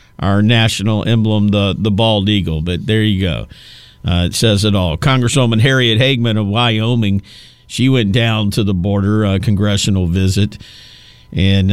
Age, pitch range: 50-69, 100-135 Hz